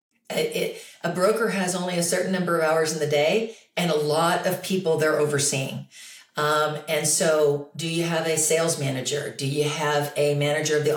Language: English